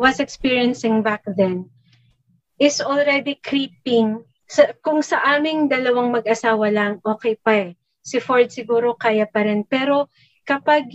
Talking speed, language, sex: 130 wpm, Filipino, female